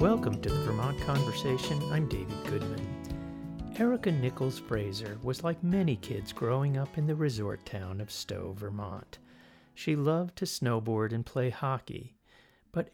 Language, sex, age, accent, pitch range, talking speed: English, male, 40-59, American, 110-170 Hz, 150 wpm